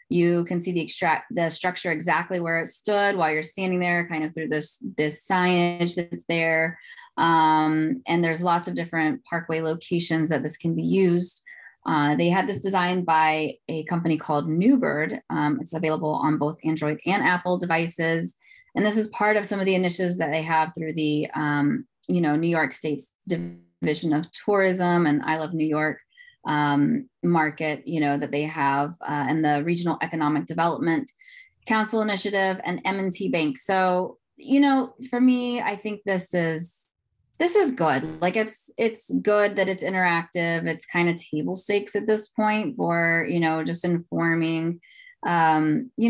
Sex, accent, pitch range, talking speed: female, American, 155-195 Hz, 175 wpm